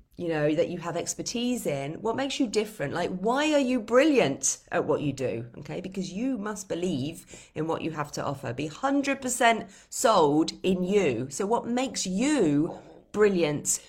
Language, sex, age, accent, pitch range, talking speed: English, female, 30-49, British, 145-210 Hz, 180 wpm